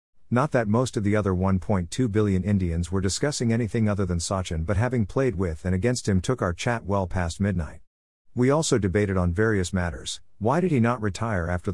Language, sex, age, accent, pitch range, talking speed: English, male, 50-69, American, 90-115 Hz, 205 wpm